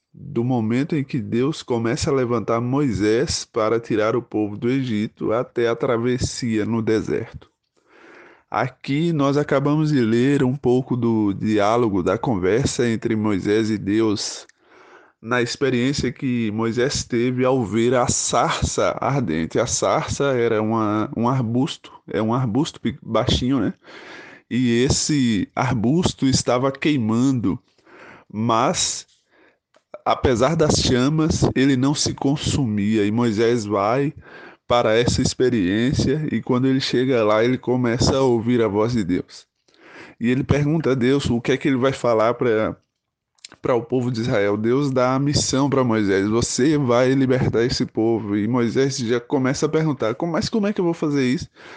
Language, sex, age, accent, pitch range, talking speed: Portuguese, male, 20-39, Brazilian, 115-135 Hz, 150 wpm